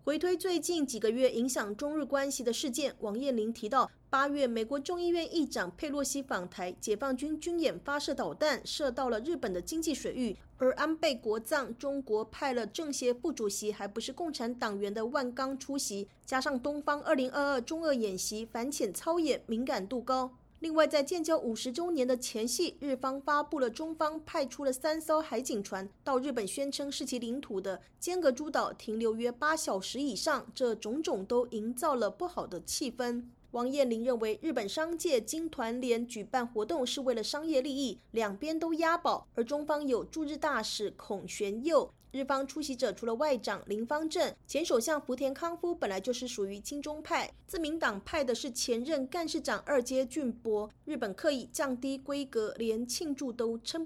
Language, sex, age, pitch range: Chinese, female, 30-49, 235-300 Hz